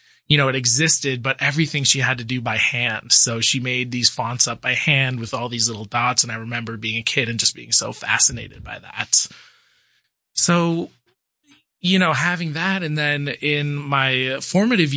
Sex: male